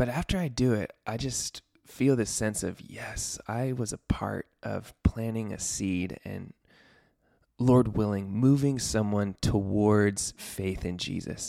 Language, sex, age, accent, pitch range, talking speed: English, male, 20-39, American, 105-120 Hz, 150 wpm